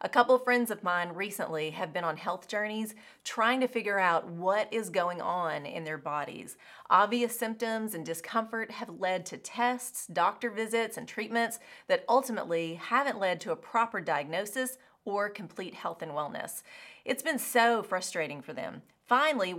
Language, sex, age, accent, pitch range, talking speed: English, female, 30-49, American, 175-240 Hz, 170 wpm